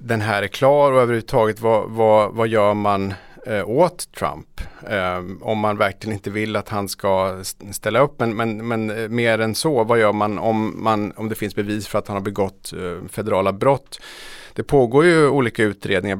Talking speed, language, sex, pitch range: 190 wpm, Swedish, male, 100-115 Hz